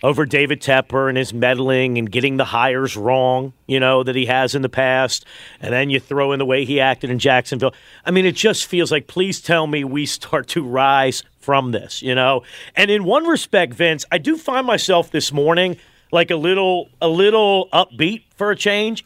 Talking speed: 210 wpm